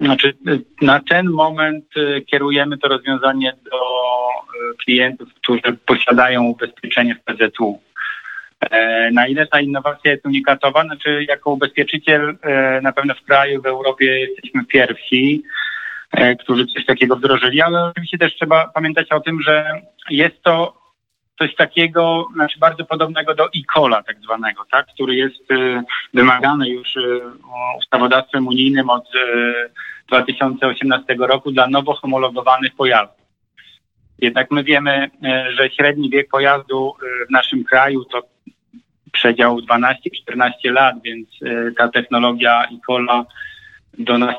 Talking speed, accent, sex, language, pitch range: 120 wpm, native, male, Polish, 120-145 Hz